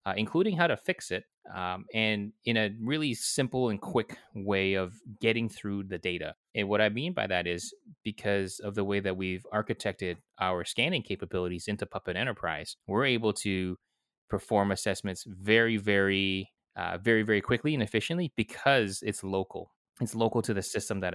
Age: 20-39